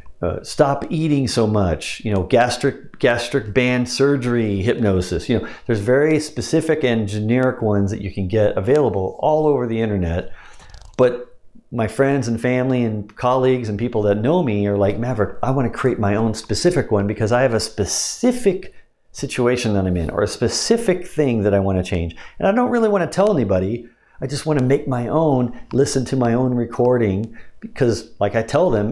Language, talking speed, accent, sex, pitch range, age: English, 195 wpm, American, male, 100-135 Hz, 50-69